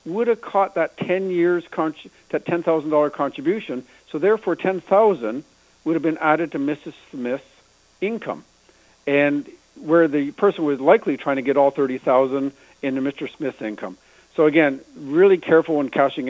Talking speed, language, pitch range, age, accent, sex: 165 wpm, English, 140-185 Hz, 60-79, American, male